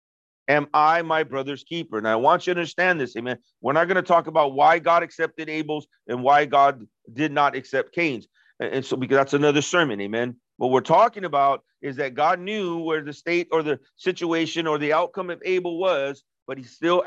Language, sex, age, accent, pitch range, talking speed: English, male, 40-59, American, 145-190 Hz, 210 wpm